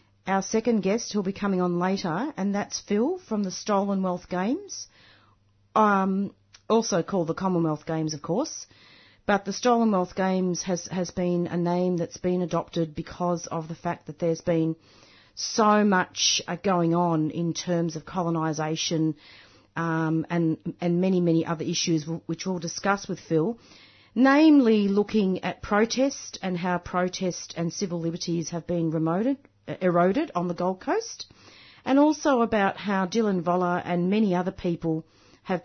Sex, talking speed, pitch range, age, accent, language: female, 160 wpm, 165-200 Hz, 40-59, Australian, English